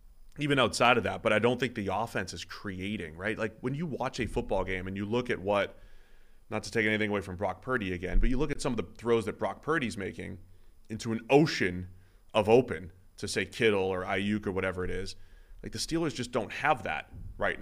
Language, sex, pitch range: English, male, 95-120 Hz